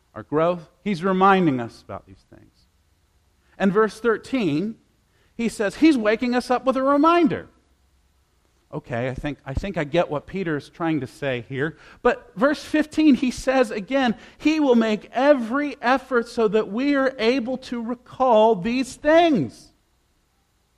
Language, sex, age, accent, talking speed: English, male, 50-69, American, 155 wpm